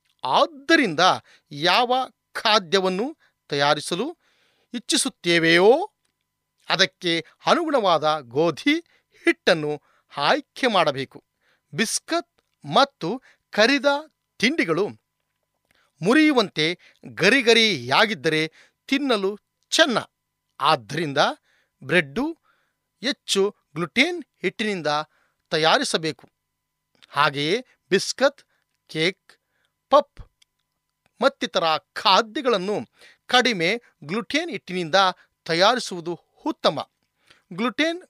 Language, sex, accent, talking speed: Kannada, male, native, 60 wpm